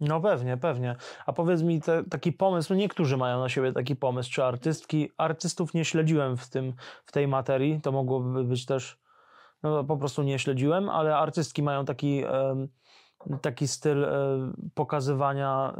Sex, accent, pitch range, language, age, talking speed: male, native, 135-160 Hz, Polish, 20-39, 160 wpm